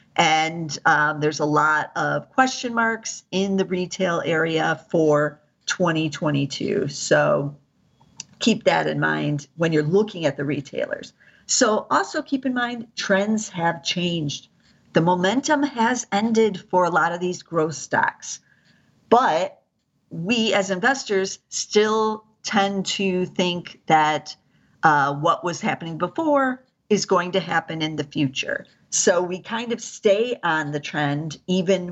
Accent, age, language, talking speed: American, 50-69, English, 140 wpm